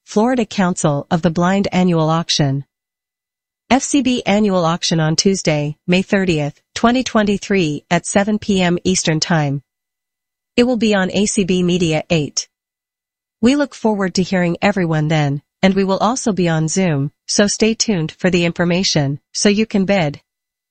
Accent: American